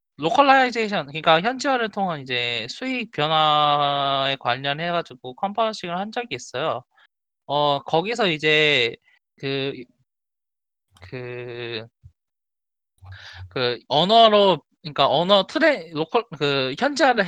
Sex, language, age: male, Korean, 20-39